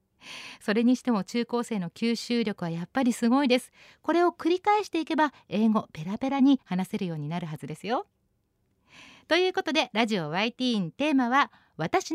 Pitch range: 195-300 Hz